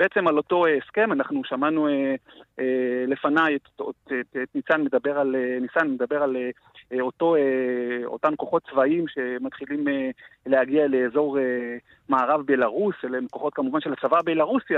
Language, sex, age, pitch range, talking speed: Hebrew, male, 40-59, 140-180 Hz, 110 wpm